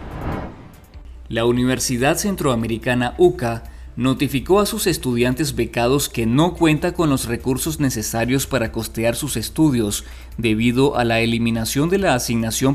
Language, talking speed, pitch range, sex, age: Spanish, 125 wpm, 115-140 Hz, male, 30-49